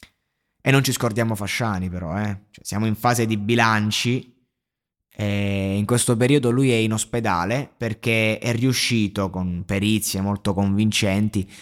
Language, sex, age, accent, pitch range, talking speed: Italian, male, 20-39, native, 110-140 Hz, 145 wpm